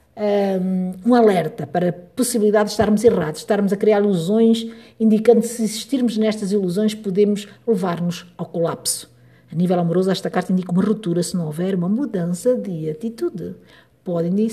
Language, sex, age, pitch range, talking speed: Portuguese, female, 50-69, 170-220 Hz, 160 wpm